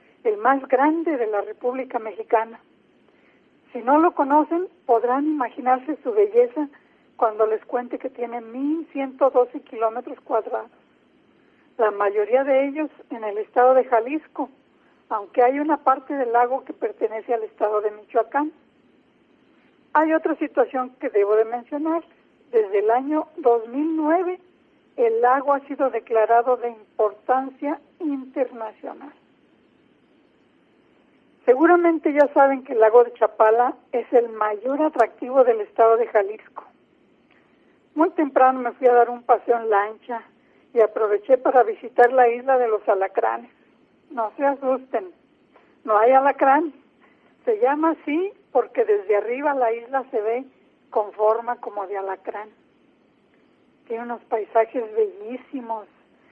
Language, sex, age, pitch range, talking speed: Spanish, female, 50-69, 230-300 Hz, 130 wpm